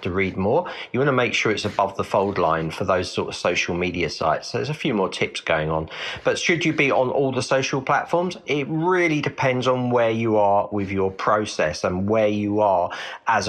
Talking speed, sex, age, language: 230 wpm, male, 40-59, English